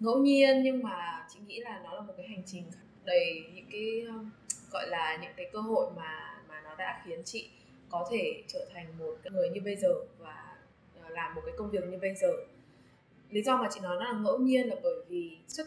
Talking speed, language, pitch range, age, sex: 225 wpm, Vietnamese, 180-265 Hz, 10-29, female